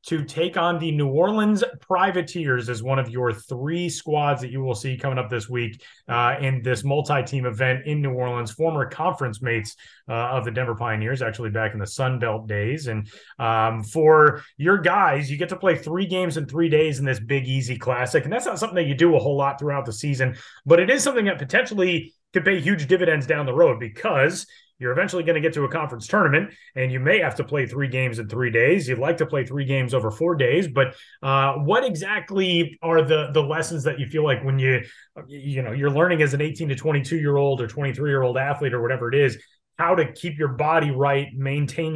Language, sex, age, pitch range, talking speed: English, male, 30-49, 125-160 Hz, 230 wpm